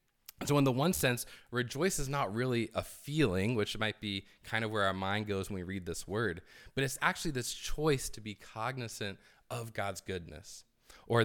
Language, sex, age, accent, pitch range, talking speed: English, male, 20-39, American, 95-125 Hz, 195 wpm